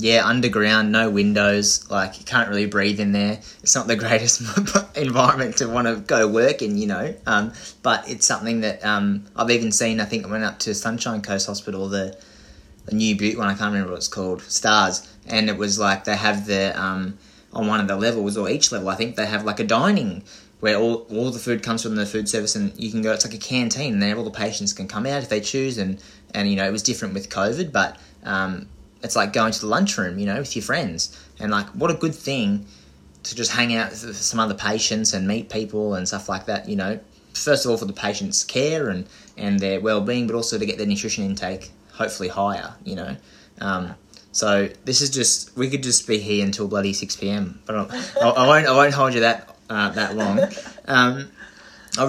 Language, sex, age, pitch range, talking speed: English, male, 20-39, 100-115 Hz, 230 wpm